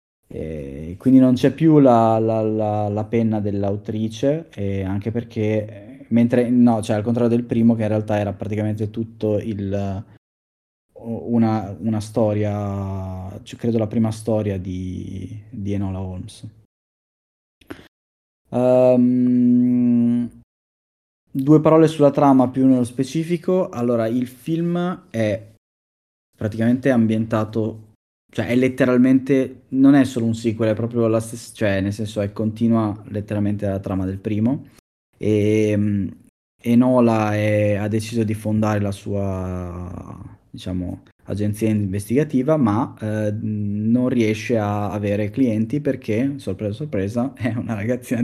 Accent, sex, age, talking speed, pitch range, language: native, male, 20-39, 125 wpm, 100-120 Hz, Italian